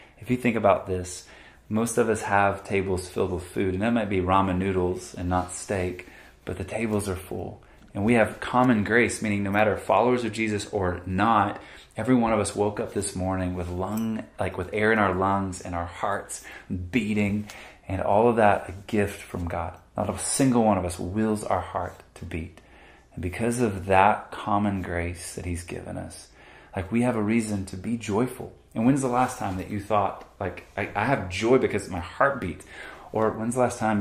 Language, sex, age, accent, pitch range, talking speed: English, male, 30-49, American, 90-110 Hz, 210 wpm